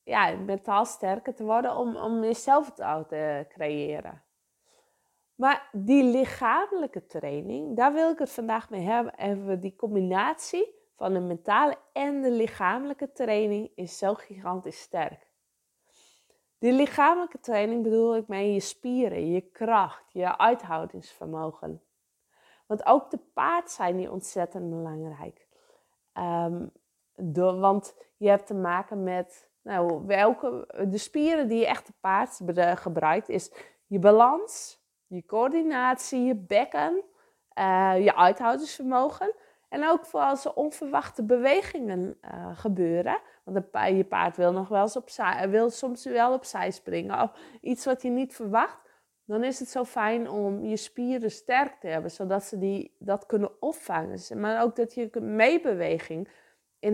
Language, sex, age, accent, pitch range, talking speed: English, female, 20-39, Dutch, 190-260 Hz, 145 wpm